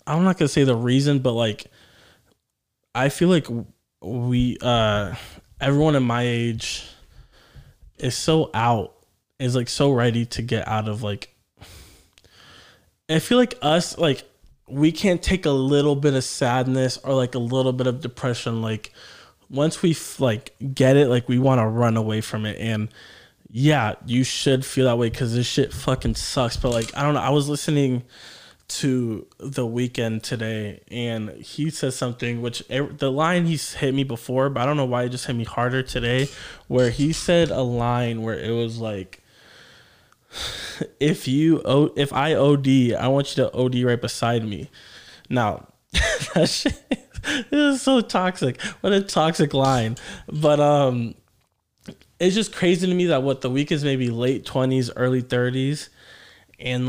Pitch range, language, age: 120-145 Hz, English, 20-39